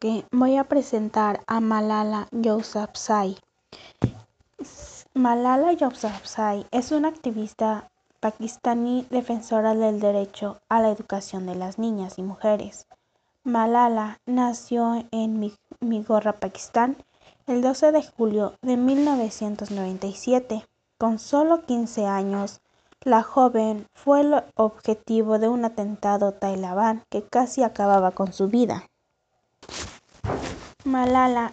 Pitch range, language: 205-245 Hz, Spanish